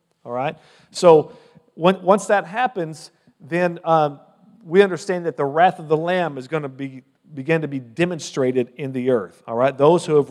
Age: 40-59